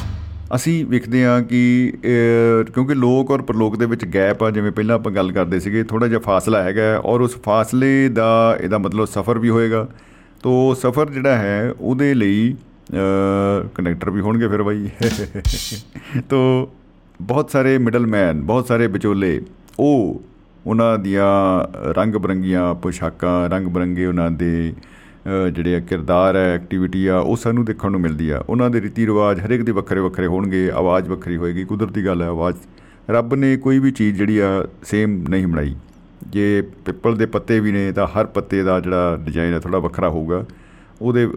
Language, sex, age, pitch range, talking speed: Punjabi, male, 50-69, 95-115 Hz, 150 wpm